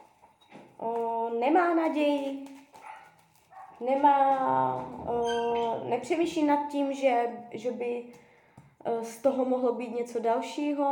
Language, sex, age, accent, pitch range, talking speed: Czech, female, 20-39, native, 235-280 Hz, 100 wpm